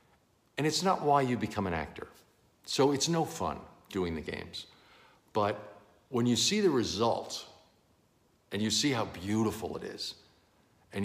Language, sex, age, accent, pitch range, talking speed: English, male, 60-79, American, 85-120 Hz, 155 wpm